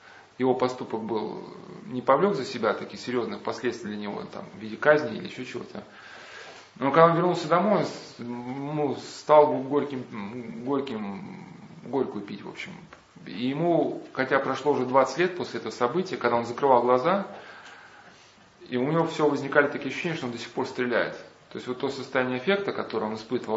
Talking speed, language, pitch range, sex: 175 wpm, Russian, 120-150 Hz, male